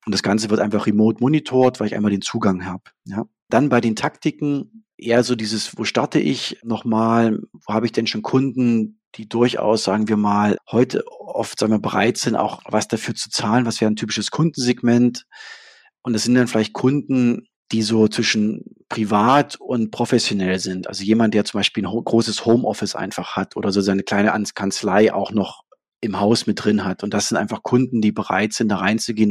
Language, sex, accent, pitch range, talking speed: German, male, German, 105-125 Hz, 205 wpm